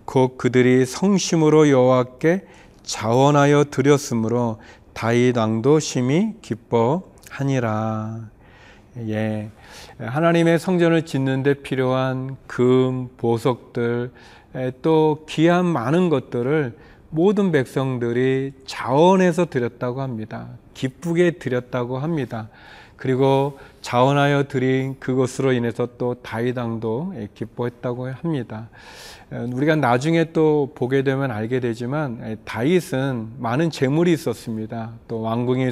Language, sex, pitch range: Korean, male, 120-150 Hz